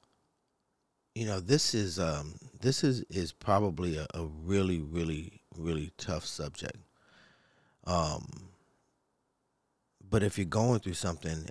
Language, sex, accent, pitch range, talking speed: English, male, American, 85-105 Hz, 120 wpm